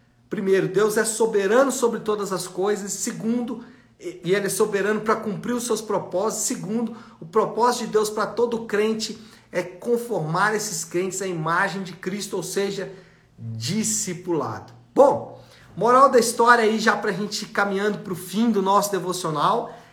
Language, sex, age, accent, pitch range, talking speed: Portuguese, male, 50-69, Brazilian, 175-230 Hz, 165 wpm